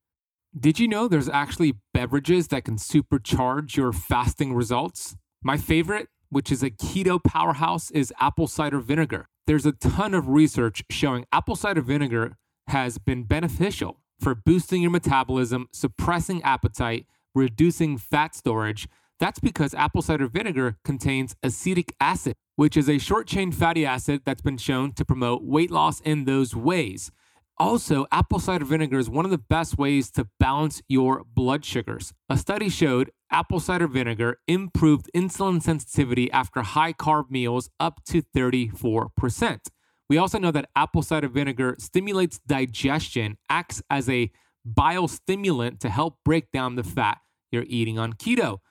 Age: 30-49